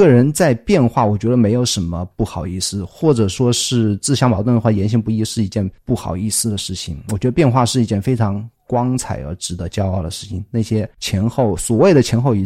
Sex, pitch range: male, 95-125 Hz